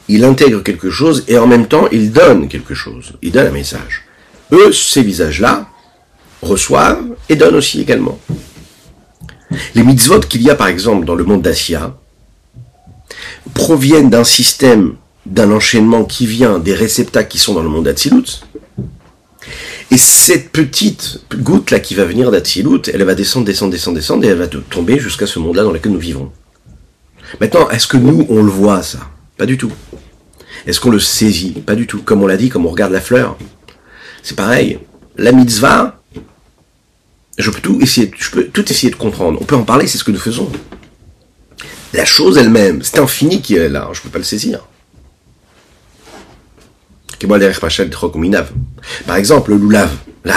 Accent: French